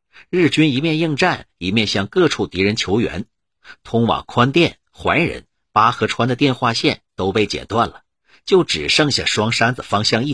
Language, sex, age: Chinese, male, 50-69